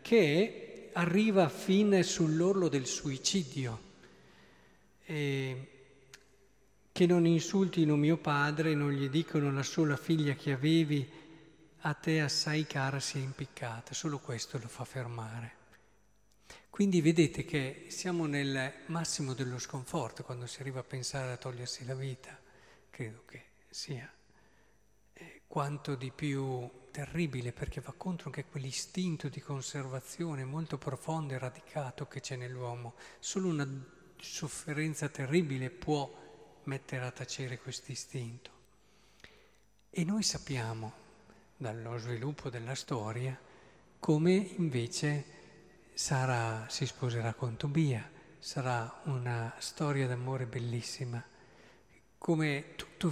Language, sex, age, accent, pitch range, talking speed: Italian, male, 50-69, native, 125-160 Hz, 115 wpm